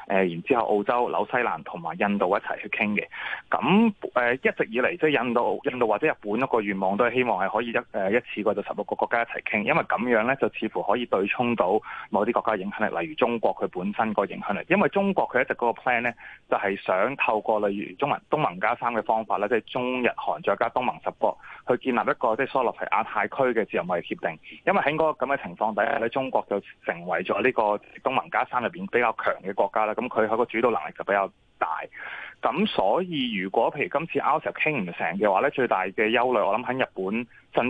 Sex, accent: male, native